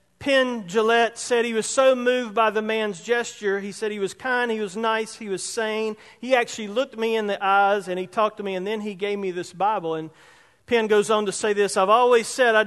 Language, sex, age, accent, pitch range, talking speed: English, male, 40-59, American, 215-275 Hz, 245 wpm